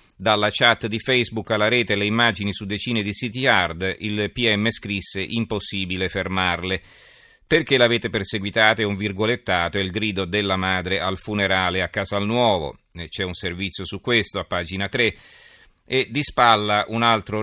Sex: male